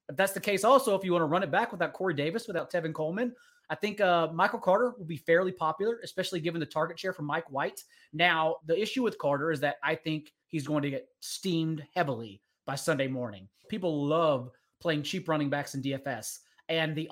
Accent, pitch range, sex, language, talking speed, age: American, 145-180 Hz, male, English, 215 wpm, 30-49